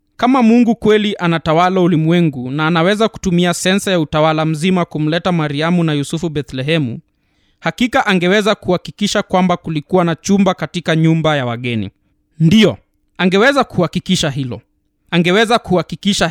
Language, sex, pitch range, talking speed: Swahili, male, 155-205 Hz, 125 wpm